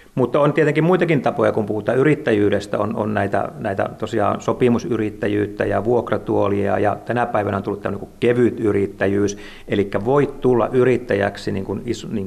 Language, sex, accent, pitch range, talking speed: Finnish, male, native, 100-110 Hz, 160 wpm